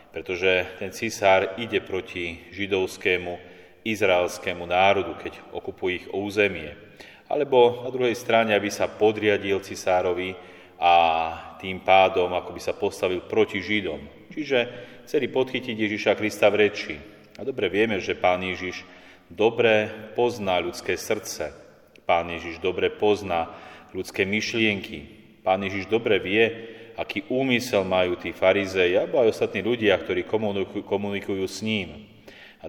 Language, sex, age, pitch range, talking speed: Slovak, male, 30-49, 95-110 Hz, 130 wpm